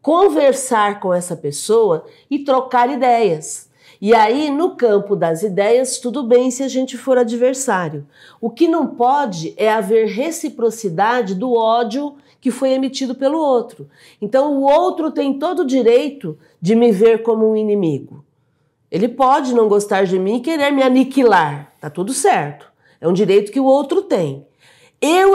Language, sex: Portuguese, female